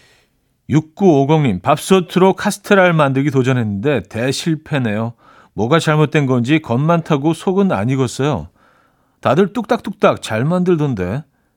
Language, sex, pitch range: Korean, male, 100-160 Hz